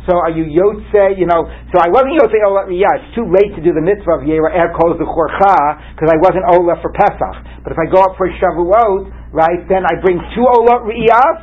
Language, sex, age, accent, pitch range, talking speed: English, male, 60-79, American, 155-195 Hz, 235 wpm